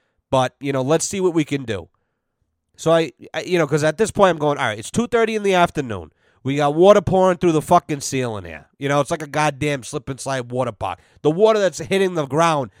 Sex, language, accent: male, English, American